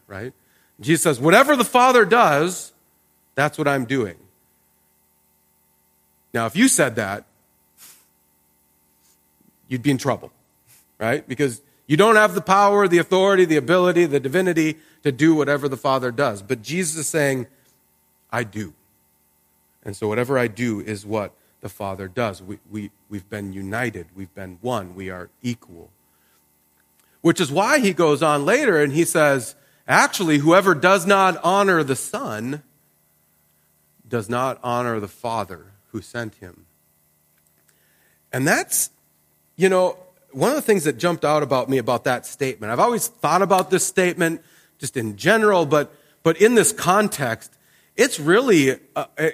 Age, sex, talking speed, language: 40-59, male, 150 wpm, English